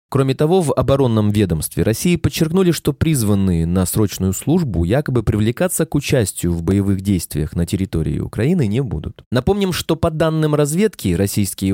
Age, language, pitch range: 20-39, Russian, 95-155 Hz